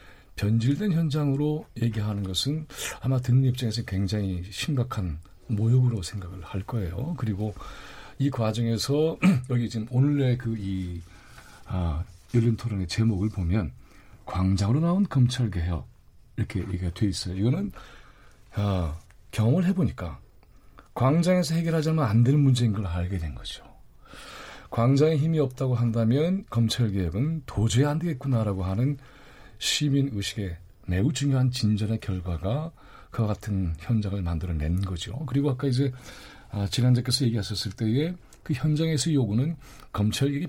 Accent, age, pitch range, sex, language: native, 40-59, 100-140 Hz, male, Korean